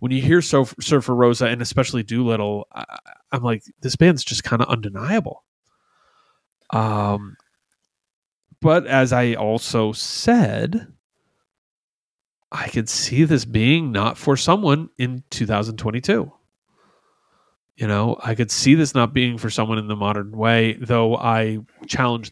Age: 30-49